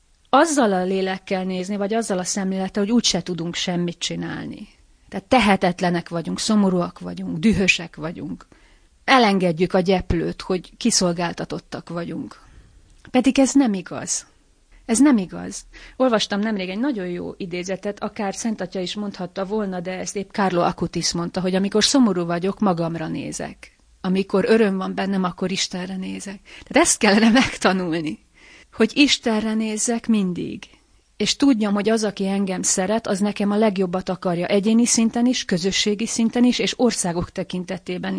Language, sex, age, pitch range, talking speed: Hungarian, female, 30-49, 185-220 Hz, 145 wpm